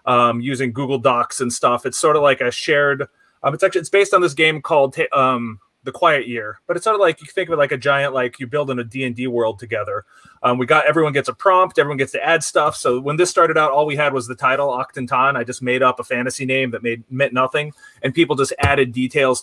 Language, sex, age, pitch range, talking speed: English, male, 30-49, 125-155 Hz, 265 wpm